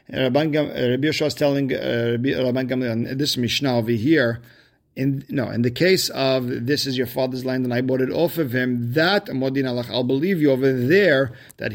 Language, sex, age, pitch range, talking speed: English, male, 50-69, 120-150 Hz, 200 wpm